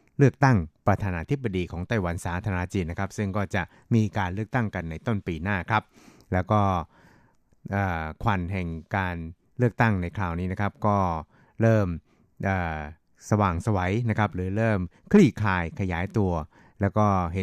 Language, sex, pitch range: Thai, male, 90-110 Hz